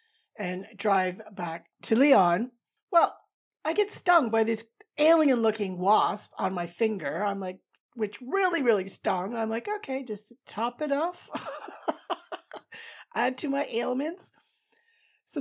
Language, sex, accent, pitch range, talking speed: English, female, American, 190-280 Hz, 135 wpm